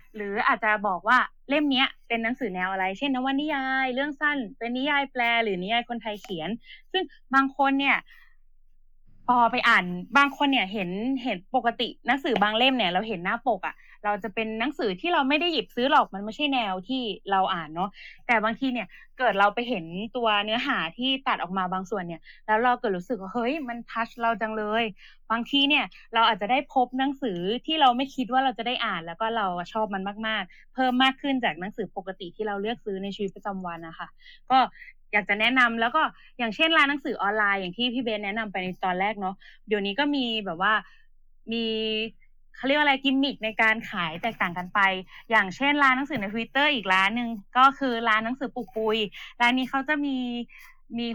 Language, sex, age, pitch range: Thai, female, 20-39, 205-265 Hz